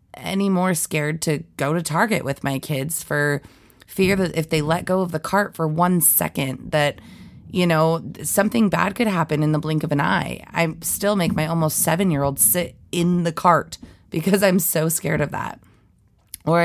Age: 20-39